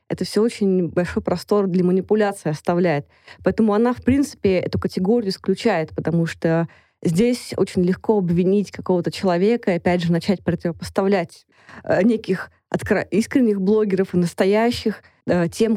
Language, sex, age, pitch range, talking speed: Russian, female, 20-39, 175-205 Hz, 130 wpm